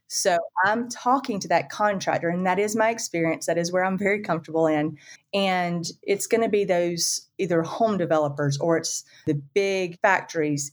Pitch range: 155-185 Hz